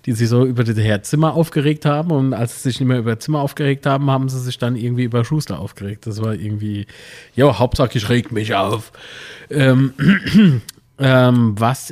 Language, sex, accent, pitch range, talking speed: German, male, German, 120-145 Hz, 200 wpm